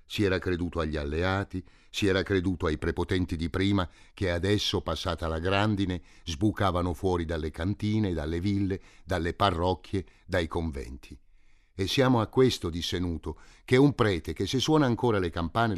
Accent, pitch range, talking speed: native, 80-100 Hz, 160 wpm